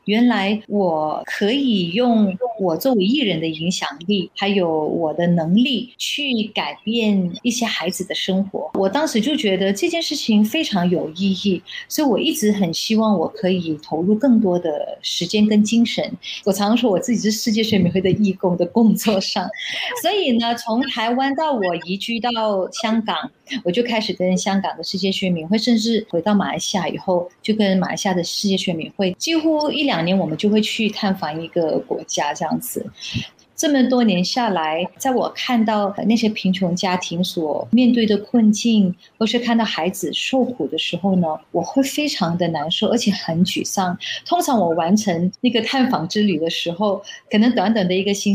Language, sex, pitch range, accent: Chinese, female, 185-235 Hz, native